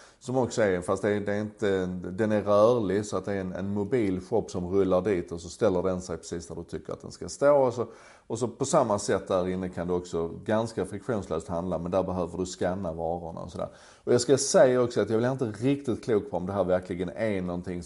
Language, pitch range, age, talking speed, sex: Swedish, 90-105 Hz, 30-49, 250 wpm, male